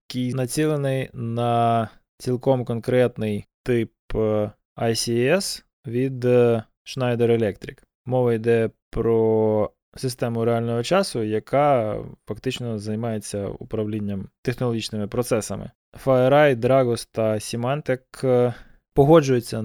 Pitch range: 110-130 Hz